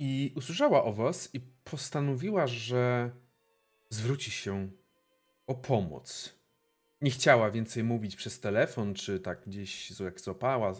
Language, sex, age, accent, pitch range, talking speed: Polish, male, 40-59, native, 110-165 Hz, 120 wpm